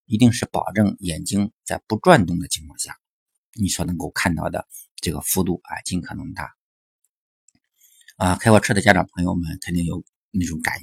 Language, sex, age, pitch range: Chinese, male, 50-69, 85-115 Hz